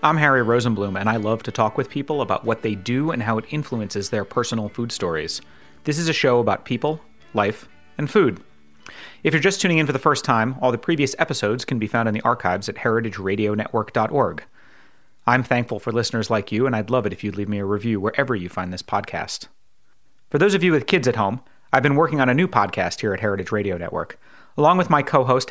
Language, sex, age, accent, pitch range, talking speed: English, male, 30-49, American, 110-145 Hz, 230 wpm